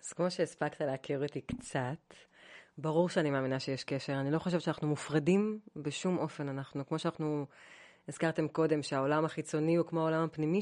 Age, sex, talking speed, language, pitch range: 30-49, female, 165 wpm, Hebrew, 150-180 Hz